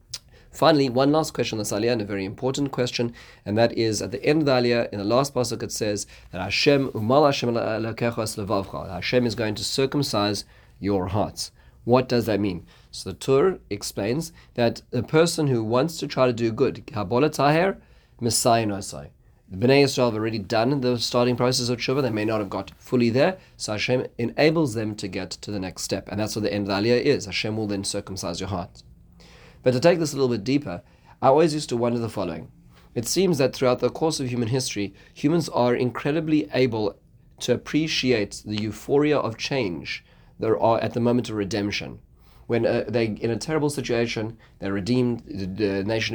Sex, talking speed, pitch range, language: male, 190 wpm, 105-130 Hz, English